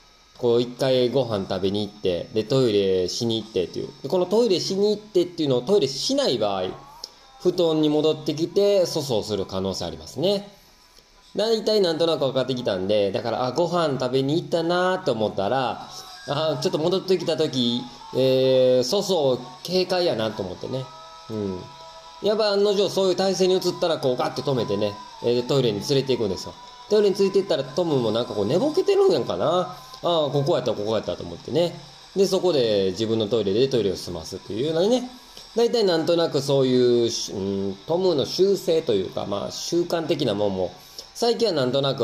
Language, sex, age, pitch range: Japanese, male, 20-39, 115-185 Hz